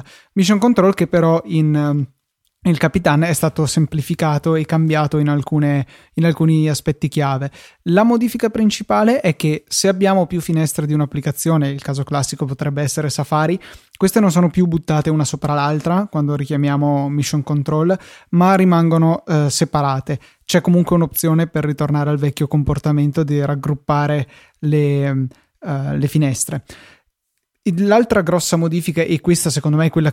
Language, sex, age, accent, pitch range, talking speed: Italian, male, 20-39, native, 150-170 Hz, 140 wpm